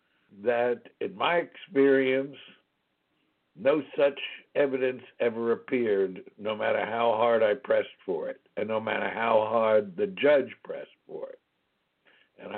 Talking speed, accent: 135 wpm, American